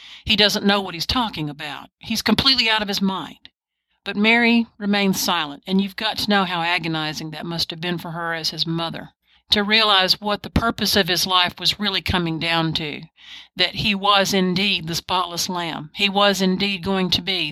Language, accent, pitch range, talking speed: English, American, 170-205 Hz, 200 wpm